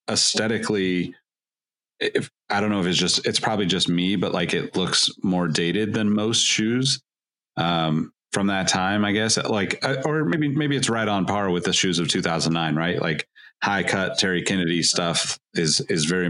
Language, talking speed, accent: English, 185 wpm, American